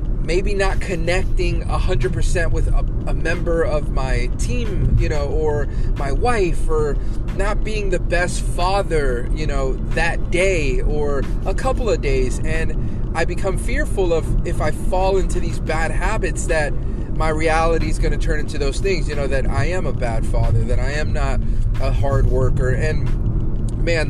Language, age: English, 30-49